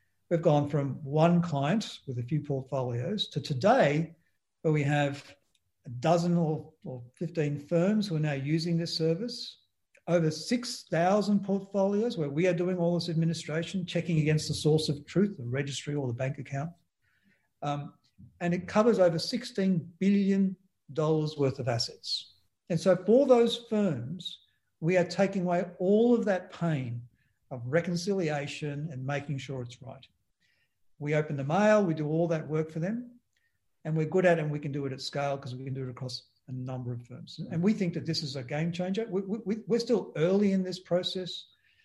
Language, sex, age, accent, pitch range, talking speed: English, male, 50-69, Australian, 140-185 Hz, 180 wpm